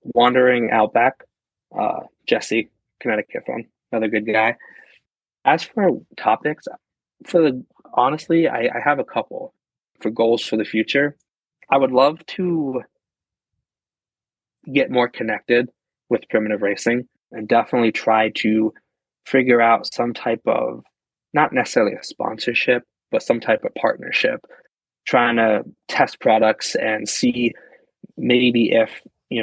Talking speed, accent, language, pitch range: 125 wpm, American, English, 110-125 Hz